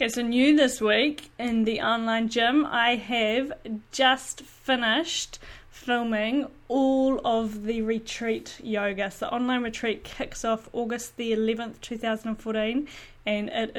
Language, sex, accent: English, female, Australian